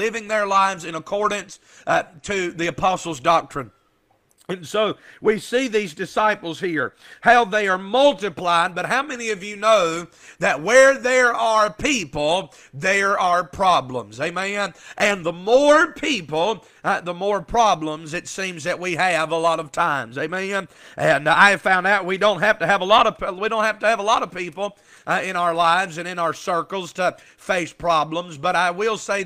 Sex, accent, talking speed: male, American, 185 wpm